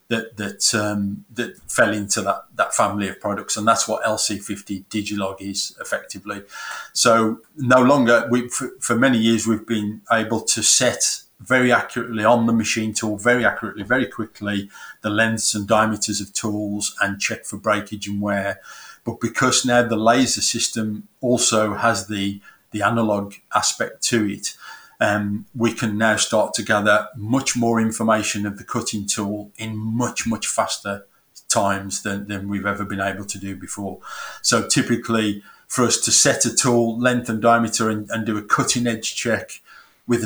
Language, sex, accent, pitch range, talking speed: English, male, British, 100-115 Hz, 170 wpm